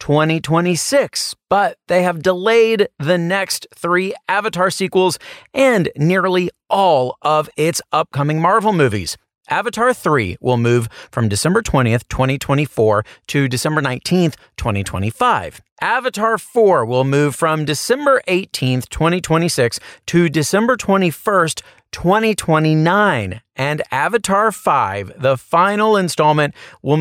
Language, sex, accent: English, male, American